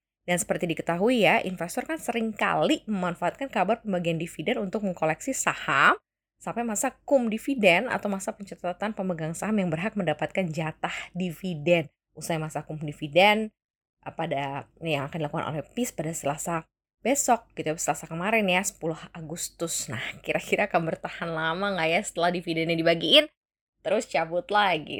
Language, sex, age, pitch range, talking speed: Indonesian, female, 20-39, 160-210 Hz, 140 wpm